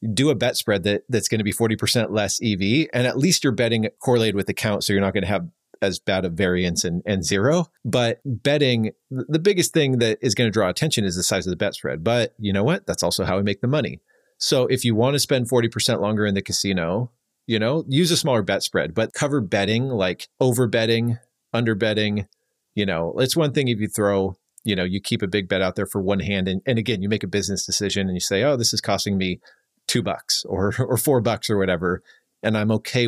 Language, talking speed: English, 245 wpm